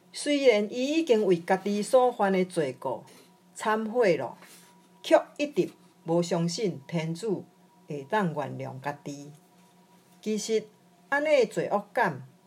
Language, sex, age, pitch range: Chinese, female, 50-69, 170-200 Hz